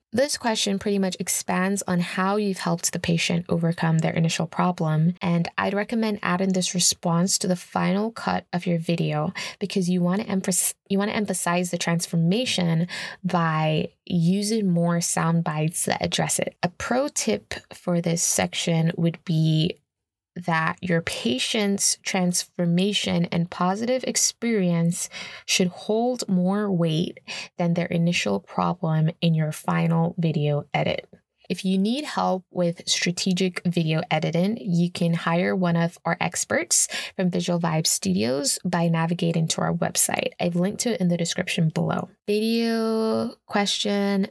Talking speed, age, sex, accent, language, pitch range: 140 wpm, 20-39, female, American, English, 170-195 Hz